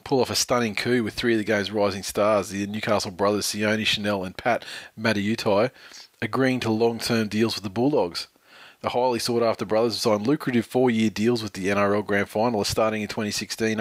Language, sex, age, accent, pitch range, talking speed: English, male, 20-39, Australian, 105-120 Hz, 190 wpm